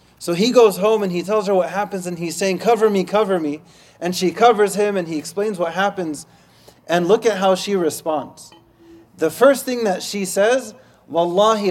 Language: English